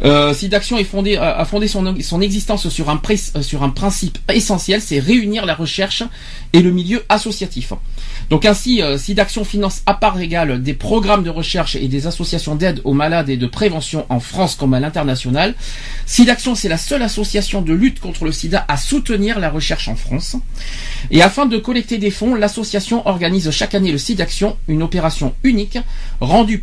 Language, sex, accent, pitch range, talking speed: French, male, French, 145-210 Hz, 185 wpm